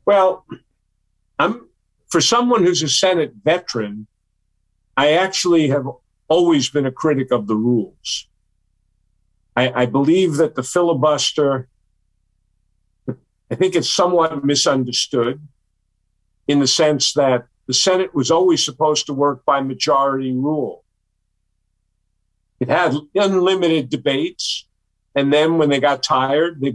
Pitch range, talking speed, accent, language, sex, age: 100-150 Hz, 120 wpm, American, English, male, 50-69